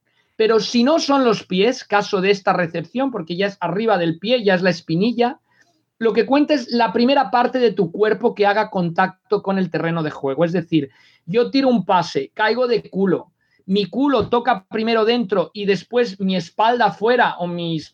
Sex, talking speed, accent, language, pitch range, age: male, 195 wpm, Spanish, Spanish, 175-230 Hz, 40-59